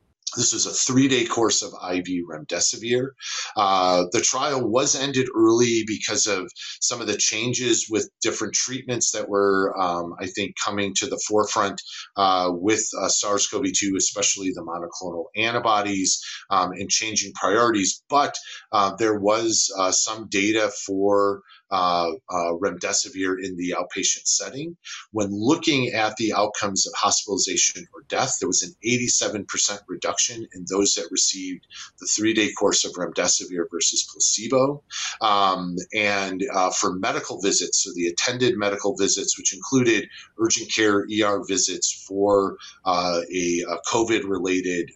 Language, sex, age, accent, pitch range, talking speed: English, male, 30-49, American, 90-115 Hz, 140 wpm